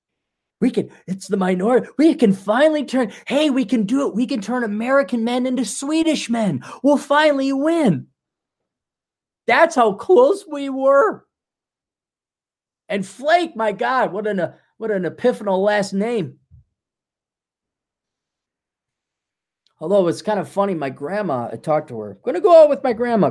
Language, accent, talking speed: English, American, 150 wpm